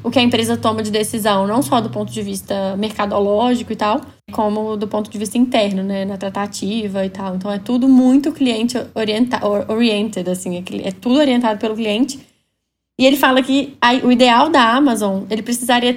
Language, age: Portuguese, 10-29